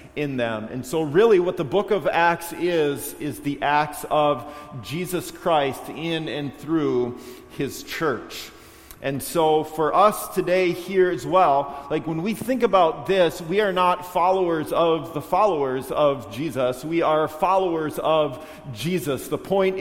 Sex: male